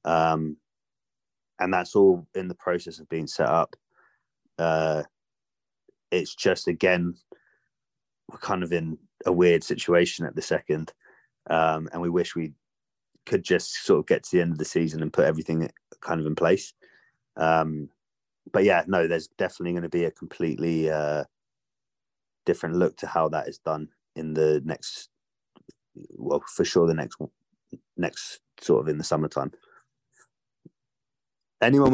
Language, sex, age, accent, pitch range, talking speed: English, male, 30-49, British, 80-90 Hz, 150 wpm